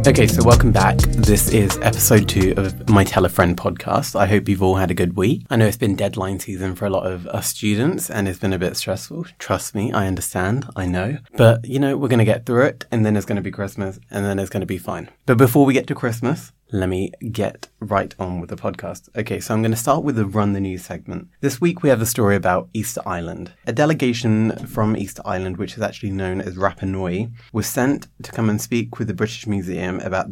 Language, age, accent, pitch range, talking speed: English, 20-39, British, 95-120 Hz, 250 wpm